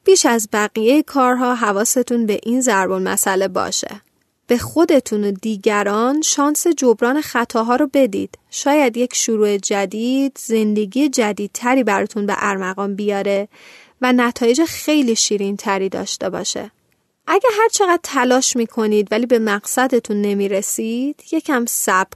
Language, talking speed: Persian, 120 wpm